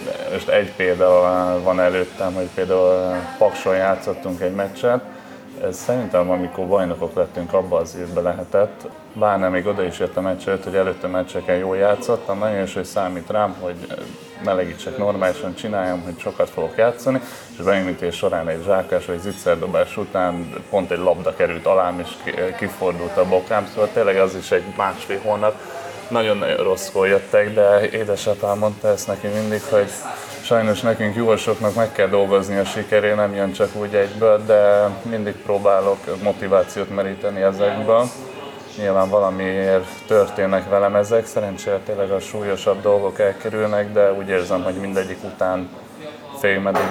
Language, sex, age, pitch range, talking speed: Hungarian, male, 20-39, 95-105 Hz, 145 wpm